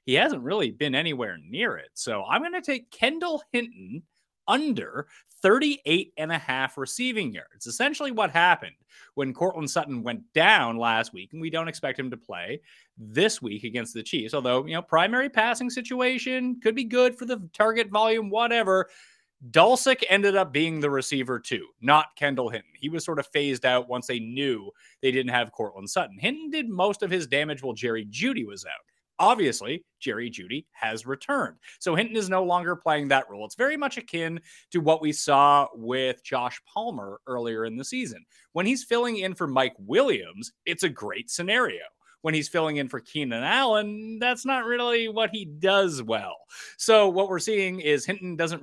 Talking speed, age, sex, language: 190 wpm, 30-49, male, English